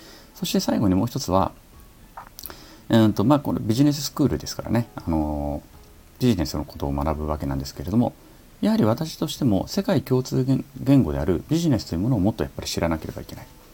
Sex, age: male, 40-59